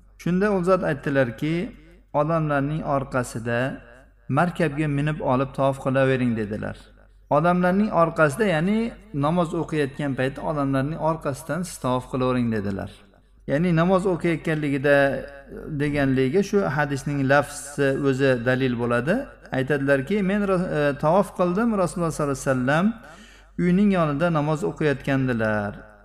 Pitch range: 125-155 Hz